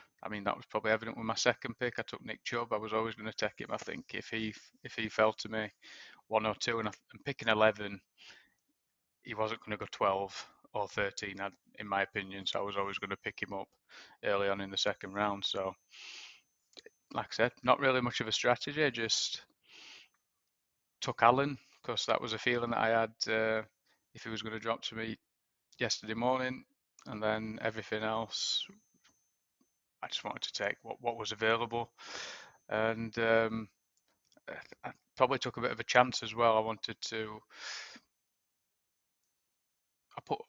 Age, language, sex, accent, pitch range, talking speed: 20-39, English, male, British, 105-115 Hz, 190 wpm